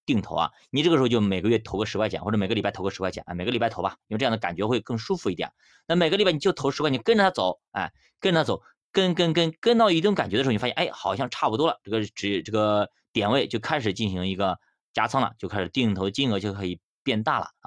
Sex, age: male, 20-39